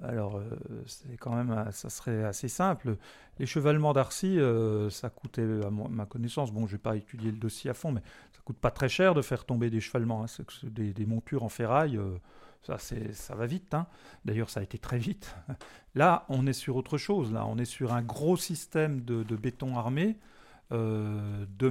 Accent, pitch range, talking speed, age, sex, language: French, 115-155 Hz, 220 wpm, 40-59, male, French